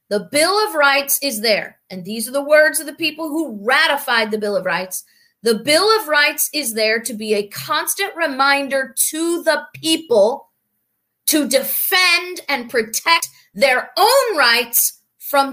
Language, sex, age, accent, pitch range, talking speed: English, female, 30-49, American, 240-320 Hz, 160 wpm